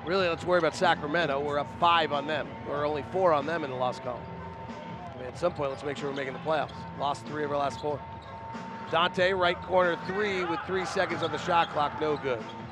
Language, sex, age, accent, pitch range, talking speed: English, male, 30-49, American, 145-185 Hz, 225 wpm